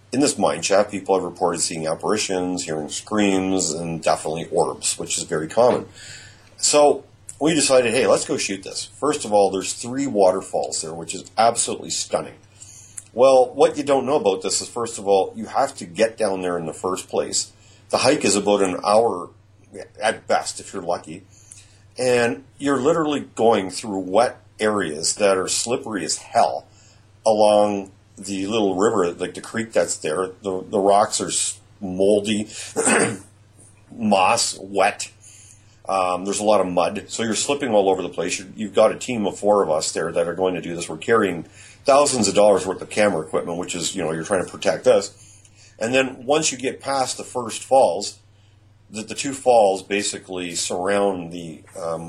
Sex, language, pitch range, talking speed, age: male, English, 95-110 Hz, 185 wpm, 40-59